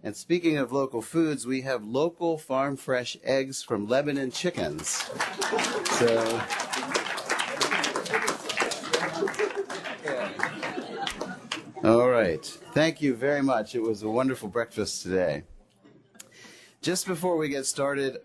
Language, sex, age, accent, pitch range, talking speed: English, male, 40-59, American, 100-130 Hz, 100 wpm